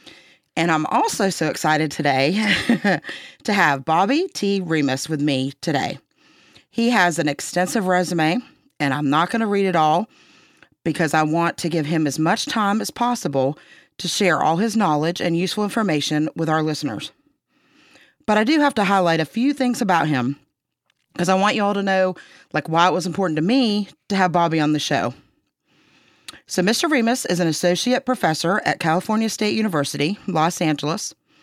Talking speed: 180 wpm